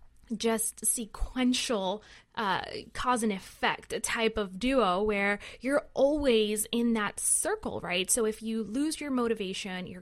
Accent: American